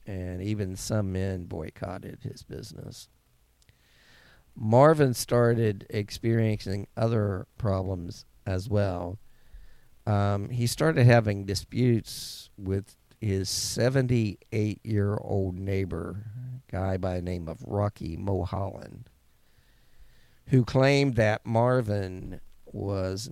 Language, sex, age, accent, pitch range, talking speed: English, male, 50-69, American, 95-115 Hz, 95 wpm